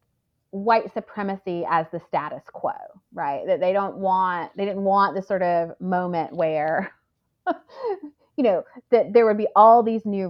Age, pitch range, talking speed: 30-49, 185-260 Hz, 165 wpm